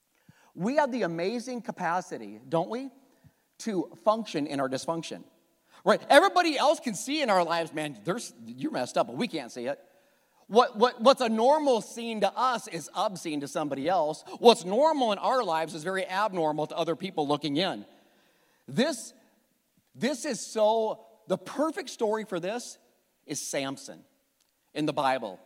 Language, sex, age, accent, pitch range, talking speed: English, male, 40-59, American, 165-235 Hz, 165 wpm